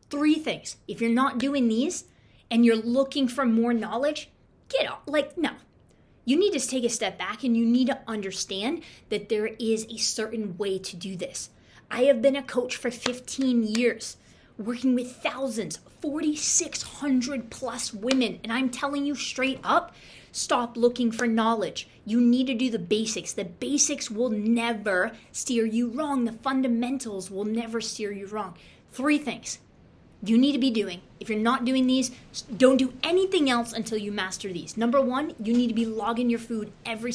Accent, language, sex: American, English, female